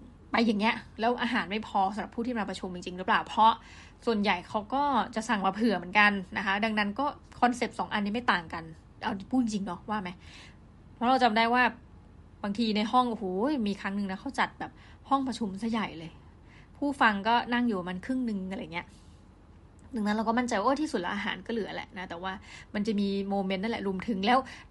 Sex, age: female, 20-39